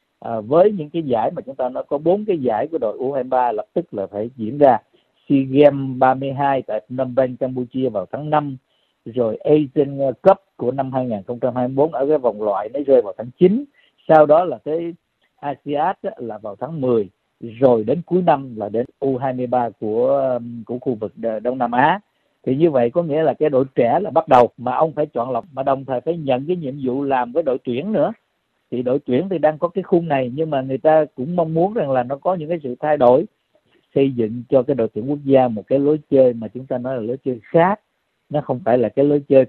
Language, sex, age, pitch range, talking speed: Vietnamese, male, 50-69, 120-150 Hz, 230 wpm